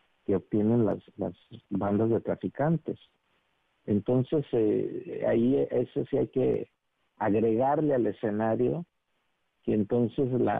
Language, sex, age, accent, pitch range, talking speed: Spanish, male, 50-69, Mexican, 105-125 Hz, 115 wpm